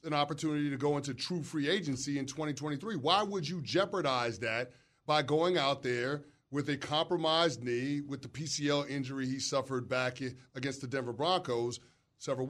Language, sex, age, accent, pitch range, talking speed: English, male, 30-49, American, 140-170 Hz, 170 wpm